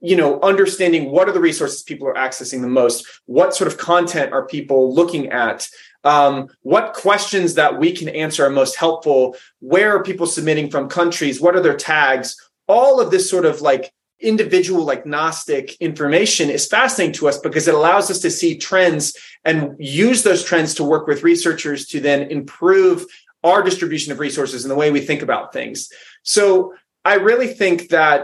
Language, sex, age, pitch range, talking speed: English, male, 30-49, 140-185 Hz, 185 wpm